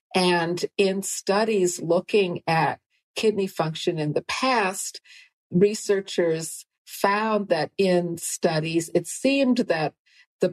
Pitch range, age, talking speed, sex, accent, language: 170-200 Hz, 50-69, 110 wpm, female, American, English